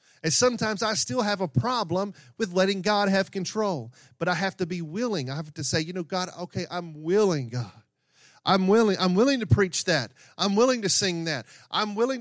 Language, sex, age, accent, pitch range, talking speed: English, male, 40-59, American, 145-200 Hz, 205 wpm